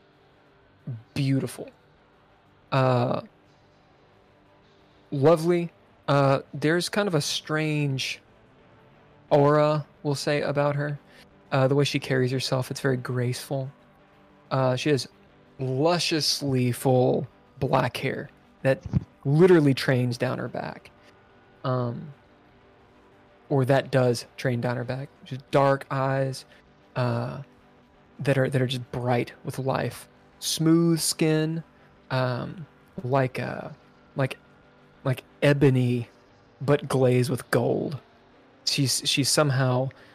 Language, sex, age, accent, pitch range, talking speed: English, male, 20-39, American, 125-140 Hz, 105 wpm